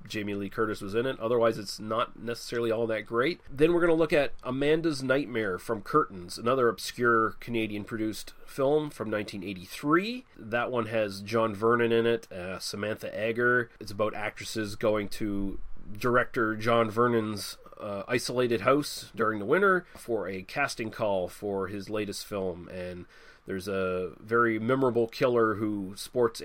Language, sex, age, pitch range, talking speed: English, male, 30-49, 100-120 Hz, 155 wpm